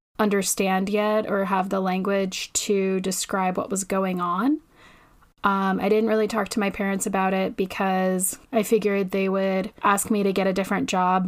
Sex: female